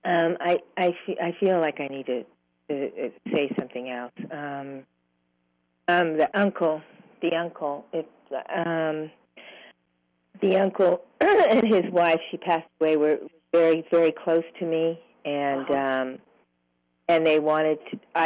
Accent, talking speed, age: American, 140 wpm, 50-69